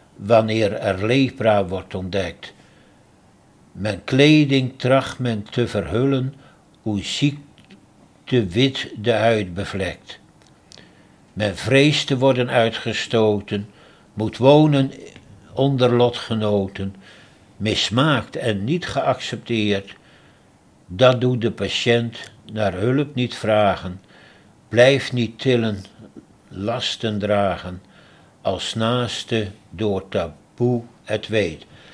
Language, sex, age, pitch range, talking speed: Dutch, male, 60-79, 105-125 Hz, 95 wpm